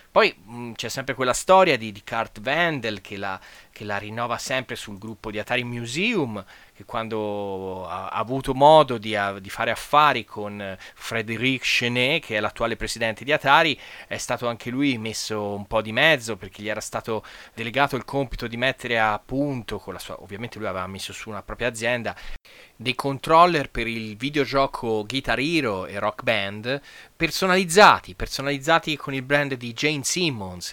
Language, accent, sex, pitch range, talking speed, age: Italian, native, male, 105-140 Hz, 170 wpm, 30-49